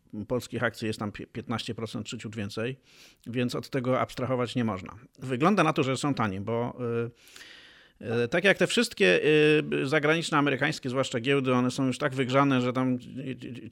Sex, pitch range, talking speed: male, 120-140 Hz, 175 wpm